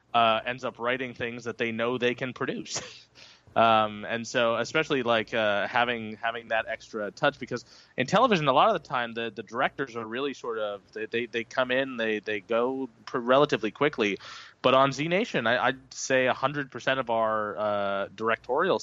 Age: 20-39